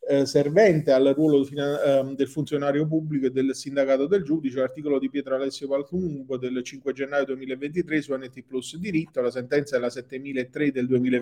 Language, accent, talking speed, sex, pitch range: Italian, native, 160 wpm, male, 130-165 Hz